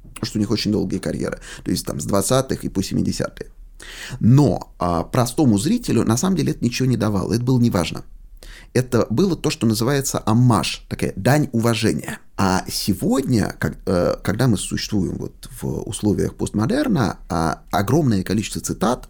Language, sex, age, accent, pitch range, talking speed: Russian, male, 30-49, native, 100-130 Hz, 165 wpm